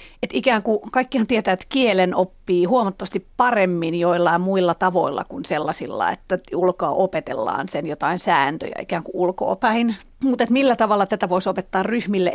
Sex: female